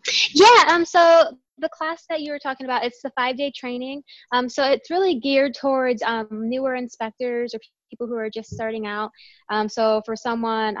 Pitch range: 210-255 Hz